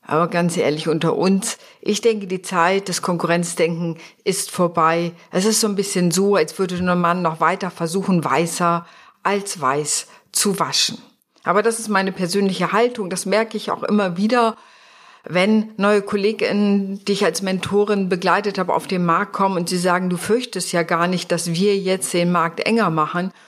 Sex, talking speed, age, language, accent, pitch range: female, 180 wpm, 50-69, German, German, 170-205 Hz